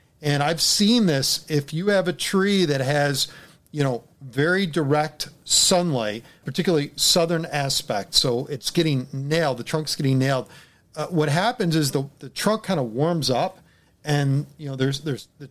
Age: 40-59